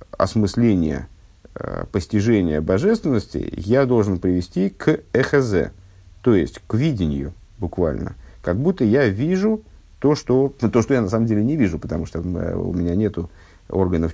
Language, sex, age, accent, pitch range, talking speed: Russian, male, 50-69, native, 90-115 Hz, 155 wpm